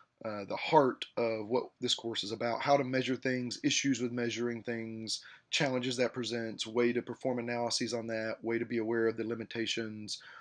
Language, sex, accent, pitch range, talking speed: English, male, American, 110-130 Hz, 190 wpm